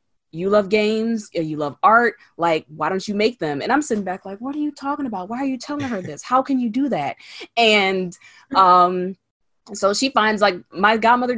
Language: English